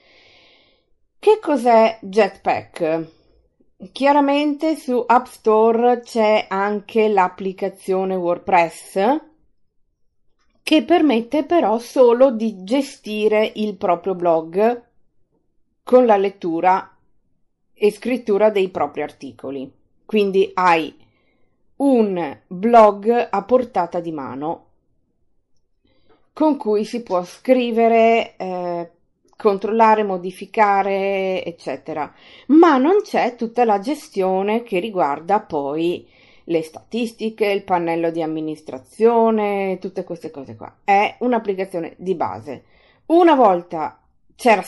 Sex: female